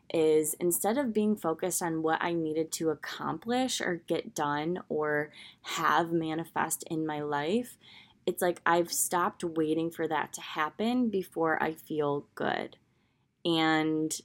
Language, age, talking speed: English, 20-39, 145 wpm